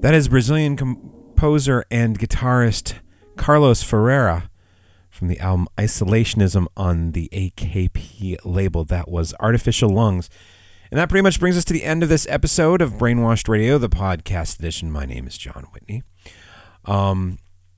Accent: American